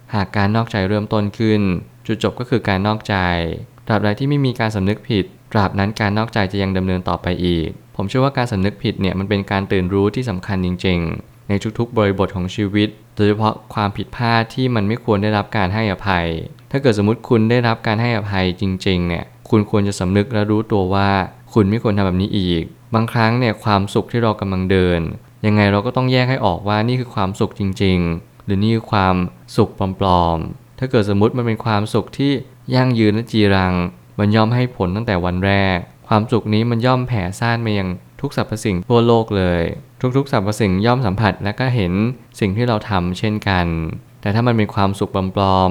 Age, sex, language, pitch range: 20-39, male, Thai, 95-120 Hz